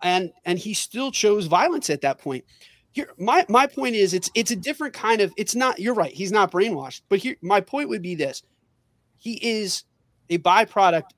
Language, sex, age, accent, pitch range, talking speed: English, male, 30-49, American, 175-245 Hz, 205 wpm